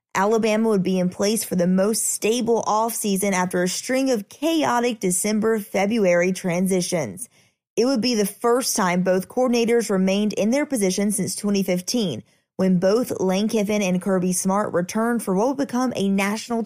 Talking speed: 160 wpm